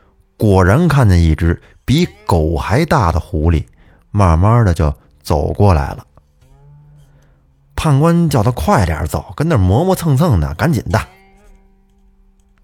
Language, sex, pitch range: Chinese, male, 80-120 Hz